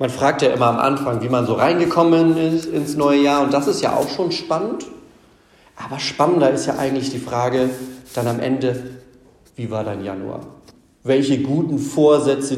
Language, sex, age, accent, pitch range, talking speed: German, male, 40-59, German, 120-150 Hz, 180 wpm